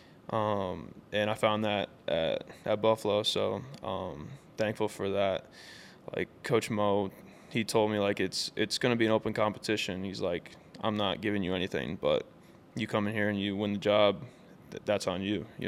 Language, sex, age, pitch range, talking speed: English, male, 10-29, 100-110 Hz, 190 wpm